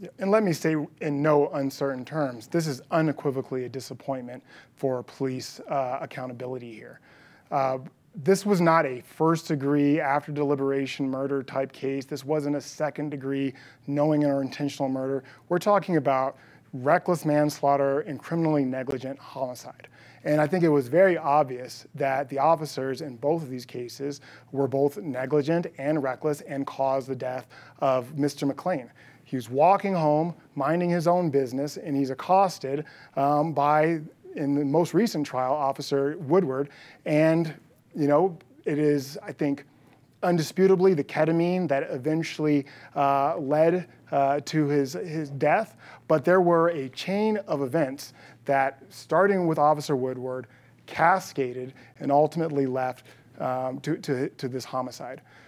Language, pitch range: English, 135-155 Hz